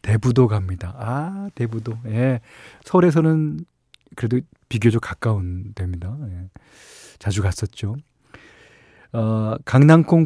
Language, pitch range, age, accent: Korean, 105-140 Hz, 40-59, native